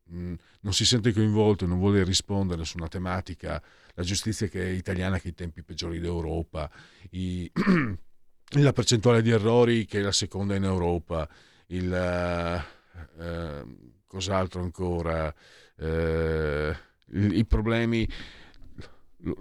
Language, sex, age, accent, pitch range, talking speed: Italian, male, 50-69, native, 85-105 Hz, 125 wpm